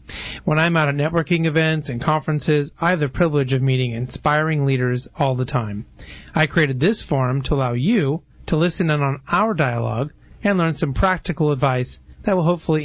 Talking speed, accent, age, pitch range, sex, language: 185 wpm, American, 40-59, 135-165 Hz, male, English